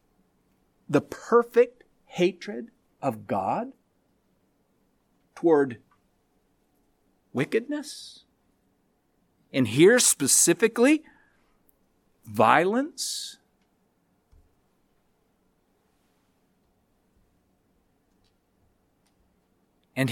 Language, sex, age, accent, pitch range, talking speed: English, male, 50-69, American, 180-240 Hz, 35 wpm